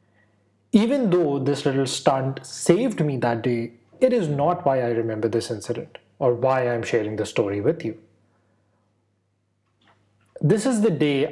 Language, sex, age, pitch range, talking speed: Urdu, male, 30-49, 110-155 Hz, 155 wpm